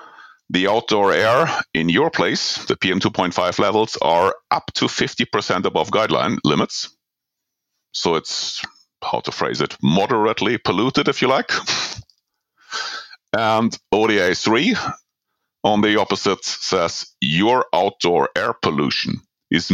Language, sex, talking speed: English, male, 120 wpm